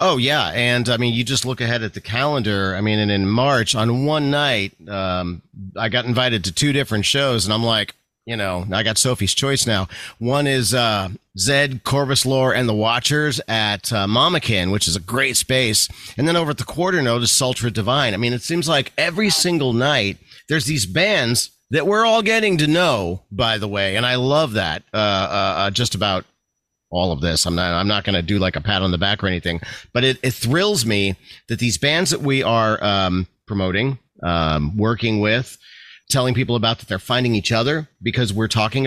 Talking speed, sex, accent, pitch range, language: 215 wpm, male, American, 100-135 Hz, English